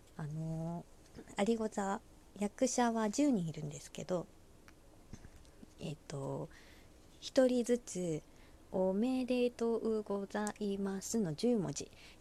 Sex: female